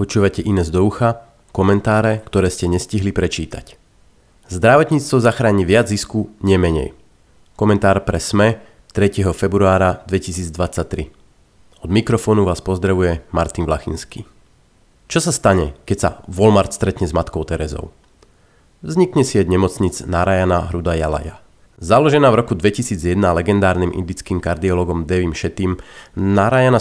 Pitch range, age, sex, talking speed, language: 90-105 Hz, 30-49, male, 120 wpm, Slovak